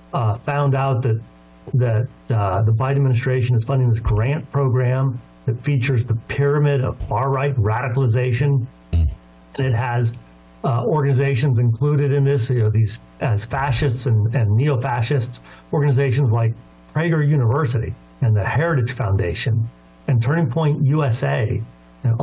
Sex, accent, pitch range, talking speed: male, American, 110-145 Hz, 140 wpm